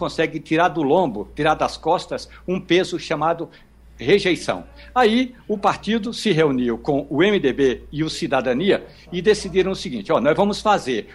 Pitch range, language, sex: 145-195 Hz, Portuguese, male